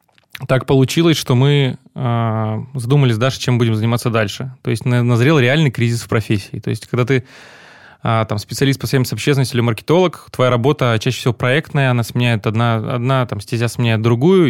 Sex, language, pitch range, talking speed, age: male, Russian, 115-135 Hz, 180 wpm, 20-39